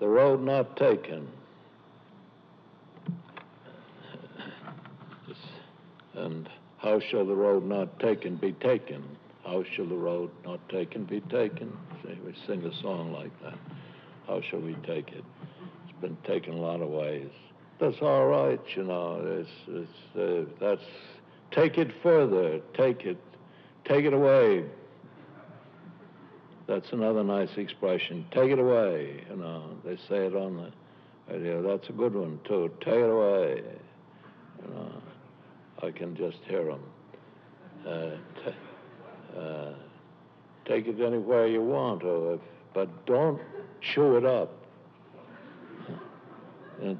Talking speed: 130 wpm